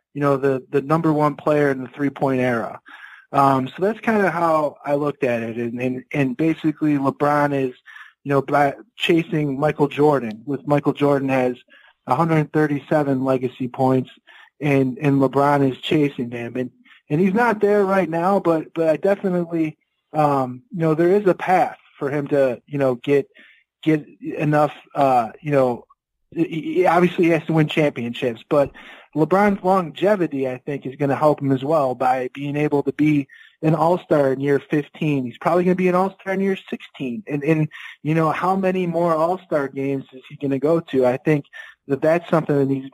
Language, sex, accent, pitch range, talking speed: English, male, American, 135-165 Hz, 195 wpm